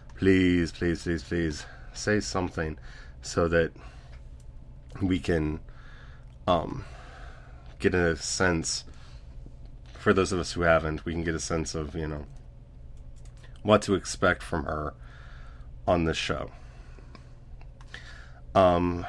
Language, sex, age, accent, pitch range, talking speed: English, male, 30-49, American, 65-95 Hz, 115 wpm